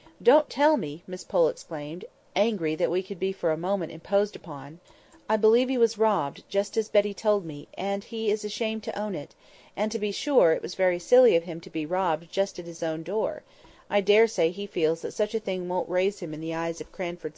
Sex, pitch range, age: female, 165-210 Hz, 40-59